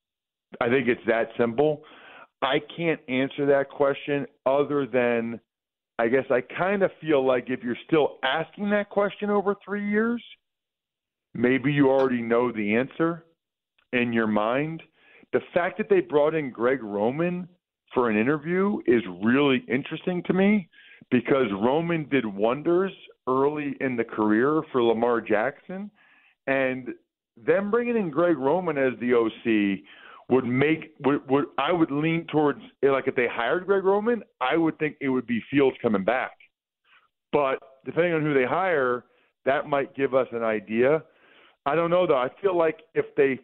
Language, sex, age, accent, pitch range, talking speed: English, male, 40-59, American, 125-170 Hz, 165 wpm